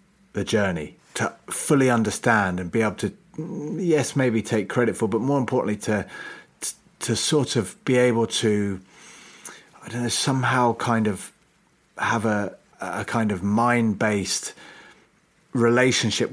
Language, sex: English, male